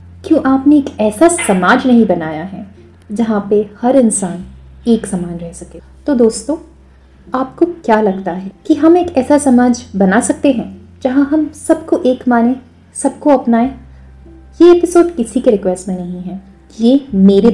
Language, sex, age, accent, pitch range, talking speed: Hindi, female, 30-49, native, 185-255 Hz, 160 wpm